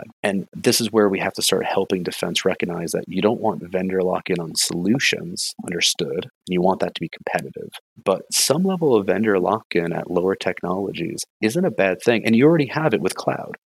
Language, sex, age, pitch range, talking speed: English, male, 30-49, 85-105 Hz, 200 wpm